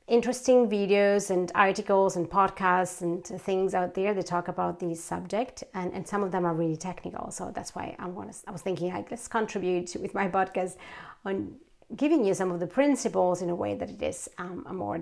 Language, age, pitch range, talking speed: English, 30-49, 180-215 Hz, 215 wpm